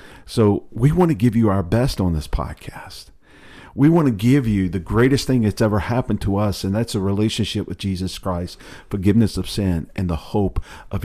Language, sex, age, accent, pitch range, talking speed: English, male, 50-69, American, 95-115 Hz, 205 wpm